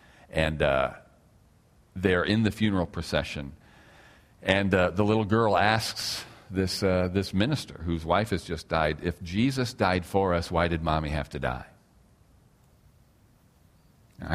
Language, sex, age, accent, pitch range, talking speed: English, male, 40-59, American, 85-110 Hz, 140 wpm